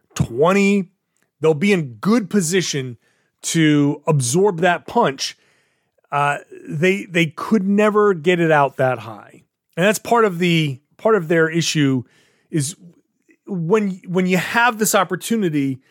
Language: English